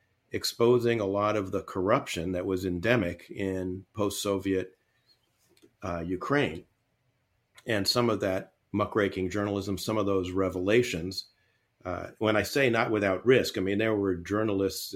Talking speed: 135 wpm